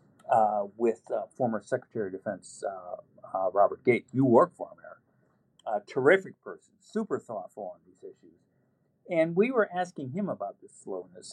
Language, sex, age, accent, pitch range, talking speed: English, male, 50-69, American, 120-180 Hz, 165 wpm